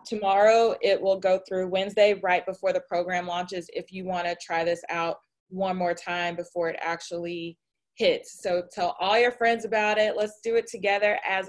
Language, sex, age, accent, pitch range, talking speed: English, female, 20-39, American, 180-215 Hz, 195 wpm